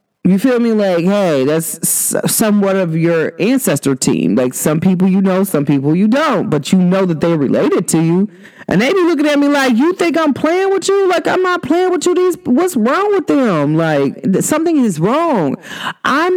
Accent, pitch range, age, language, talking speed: American, 180-265 Hz, 40-59, English, 210 wpm